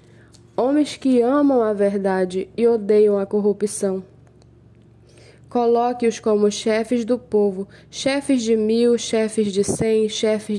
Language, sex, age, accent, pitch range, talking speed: Portuguese, female, 10-29, Brazilian, 200-245 Hz, 120 wpm